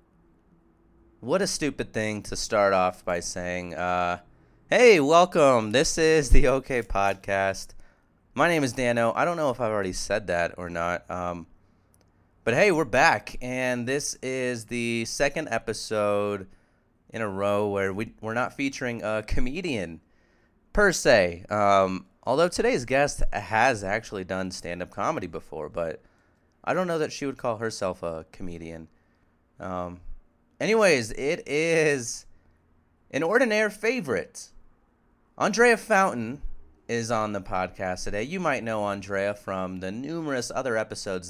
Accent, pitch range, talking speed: American, 90-130 Hz, 145 wpm